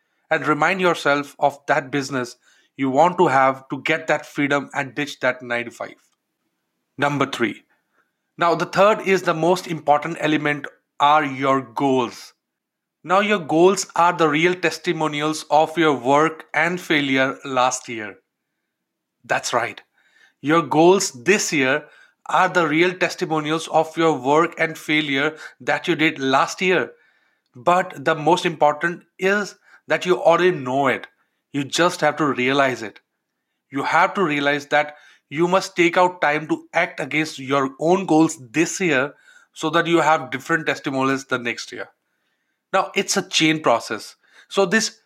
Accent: Indian